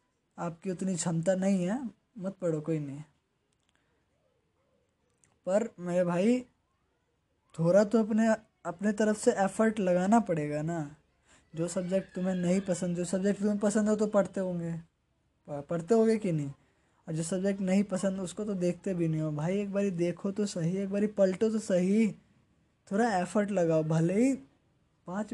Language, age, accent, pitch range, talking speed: Hindi, 20-39, native, 165-205 Hz, 160 wpm